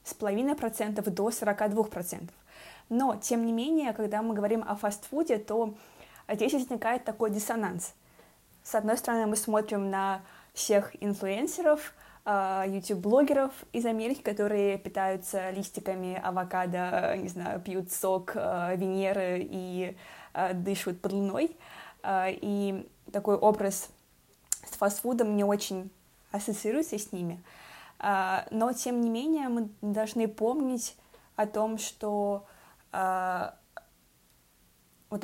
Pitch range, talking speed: 195-225 Hz, 110 wpm